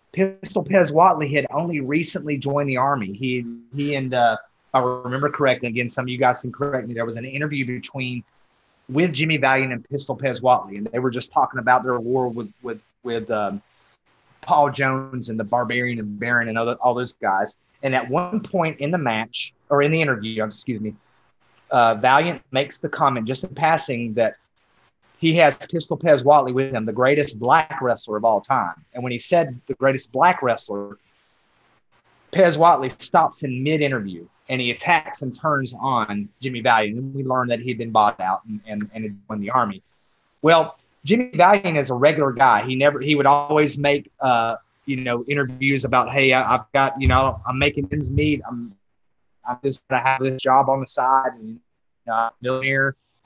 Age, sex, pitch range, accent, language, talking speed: 30-49, male, 120-145 Hz, American, English, 195 wpm